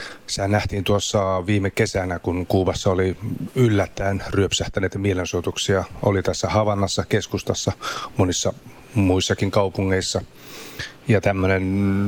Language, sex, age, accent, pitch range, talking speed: Finnish, male, 30-49, native, 95-105 Hz, 95 wpm